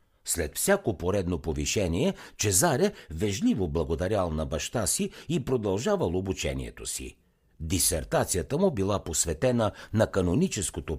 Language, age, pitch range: Bulgarian, 60-79, 85-125 Hz